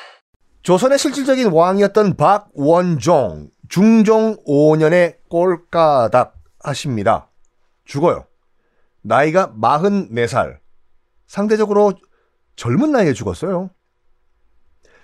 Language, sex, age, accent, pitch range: Korean, male, 40-59, native, 150-220 Hz